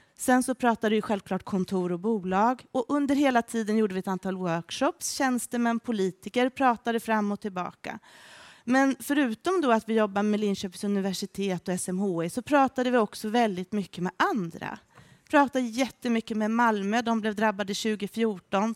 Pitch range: 200-250 Hz